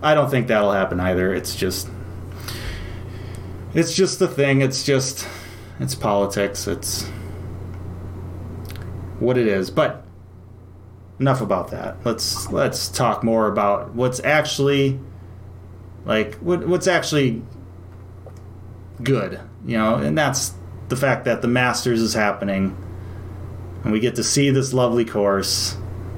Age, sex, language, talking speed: 30-49, male, English, 125 wpm